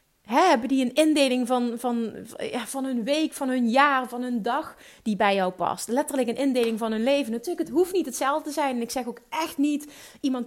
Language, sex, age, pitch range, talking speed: Dutch, female, 30-49, 210-270 Hz, 225 wpm